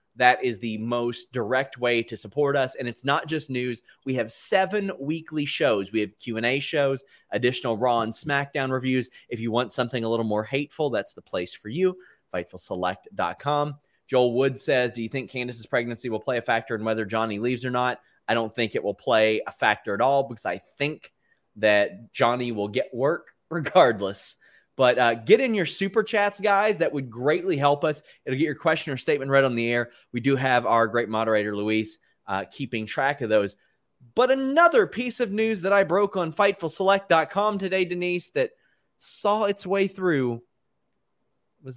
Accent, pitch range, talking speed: American, 115-145 Hz, 190 wpm